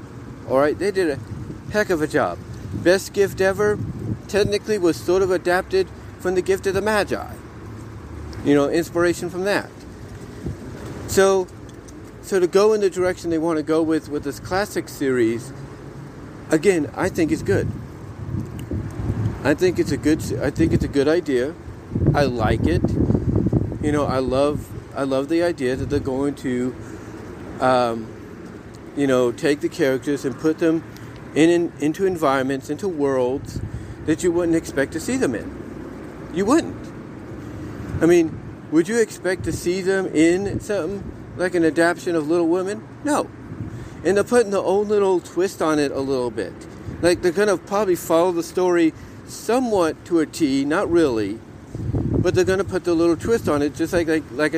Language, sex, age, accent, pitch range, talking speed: English, male, 50-69, American, 130-180 Hz, 170 wpm